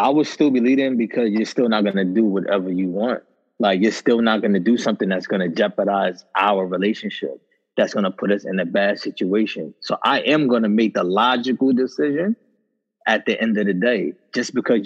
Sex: male